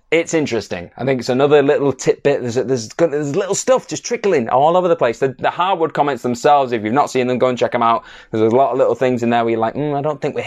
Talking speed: 285 wpm